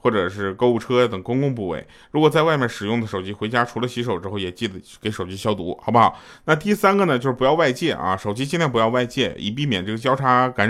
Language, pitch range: Chinese, 105-150 Hz